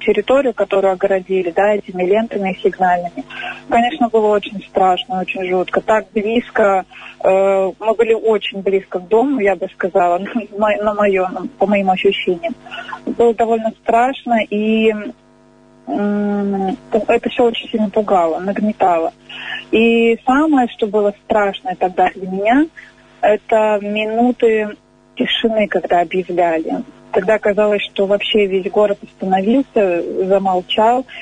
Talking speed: 125 wpm